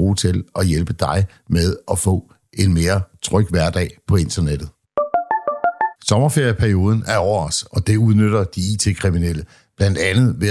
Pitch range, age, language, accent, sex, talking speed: 95-115 Hz, 60-79, Danish, native, male, 145 wpm